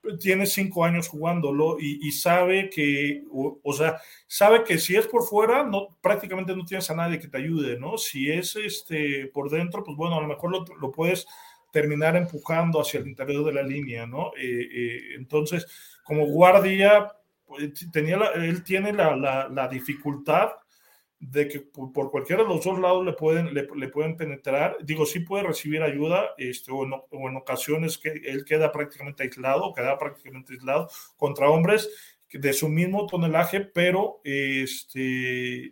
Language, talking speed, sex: English, 175 wpm, male